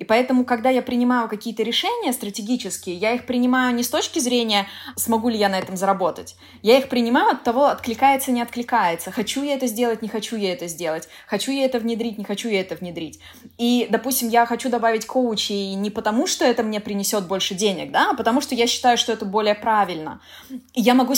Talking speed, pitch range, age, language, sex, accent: 205 wpm, 195-240 Hz, 20-39, Russian, female, native